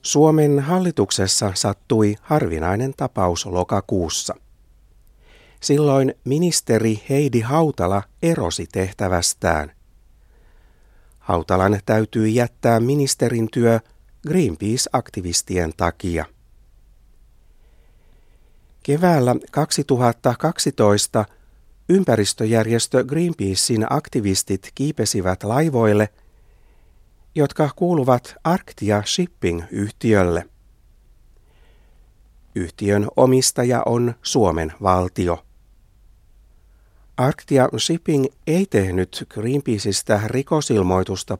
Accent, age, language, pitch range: native, 60-79, Finnish, 95-135 Hz